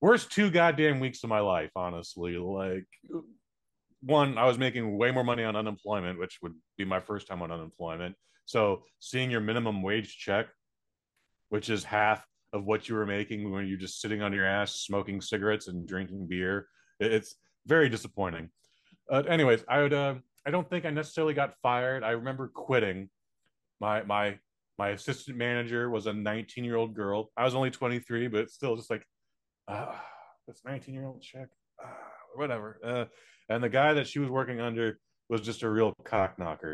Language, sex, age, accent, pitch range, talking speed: English, male, 30-49, American, 100-130 Hz, 175 wpm